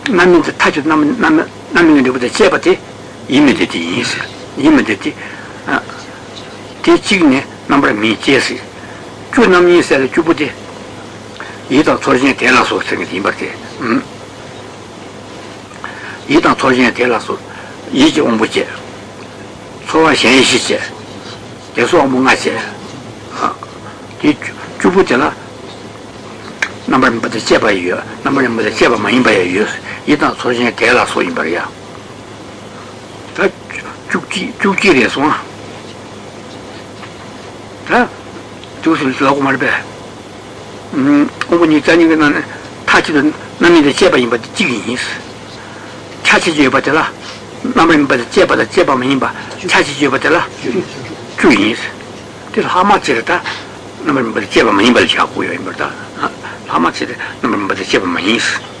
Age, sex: 60-79, male